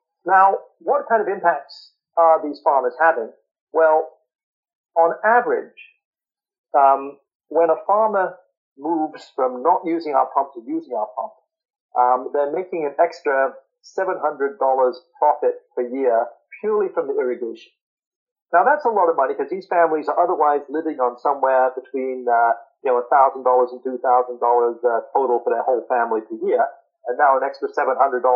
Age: 40-59